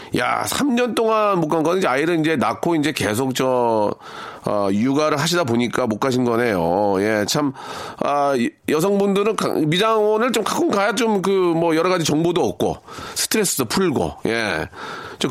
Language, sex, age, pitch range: Korean, male, 40-59, 120-195 Hz